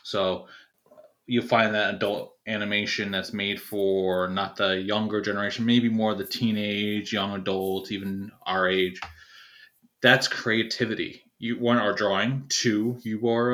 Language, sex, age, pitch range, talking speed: English, male, 20-39, 95-115 Hz, 135 wpm